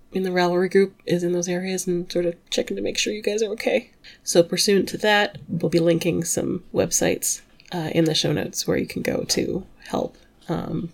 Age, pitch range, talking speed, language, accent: 30-49, 155-180 Hz, 220 wpm, English, American